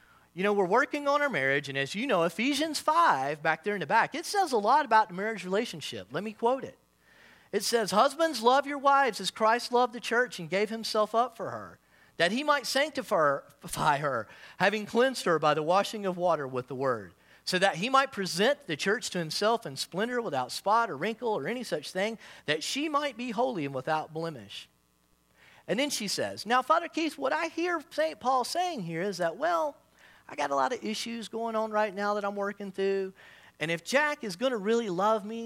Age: 40-59